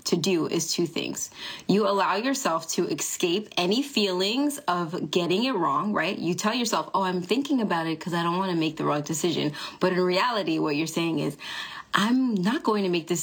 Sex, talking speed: female, 215 wpm